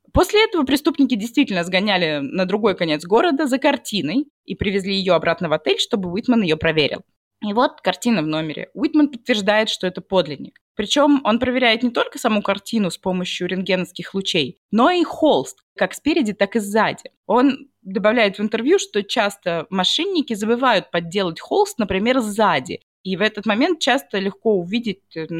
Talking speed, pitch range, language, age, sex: 165 wpm, 175-260 Hz, Russian, 20-39, female